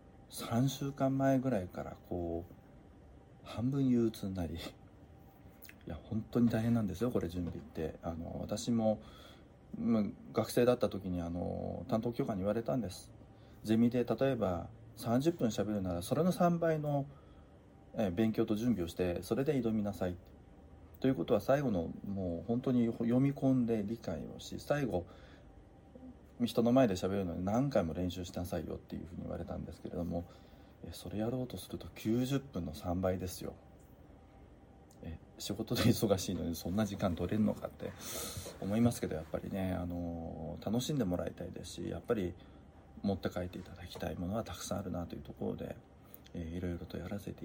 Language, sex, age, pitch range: Japanese, male, 40-59, 90-120 Hz